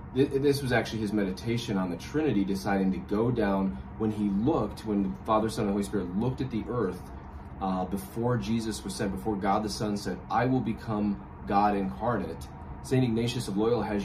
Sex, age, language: male, 30-49, English